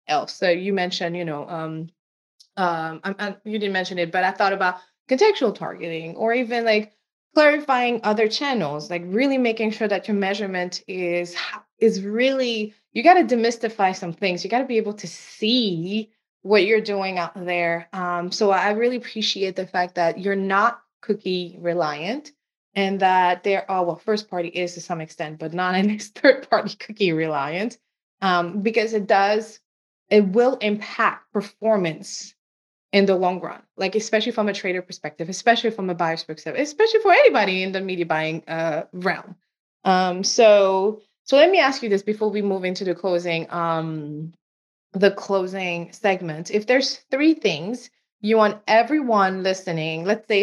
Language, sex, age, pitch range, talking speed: English, female, 20-39, 180-220 Hz, 175 wpm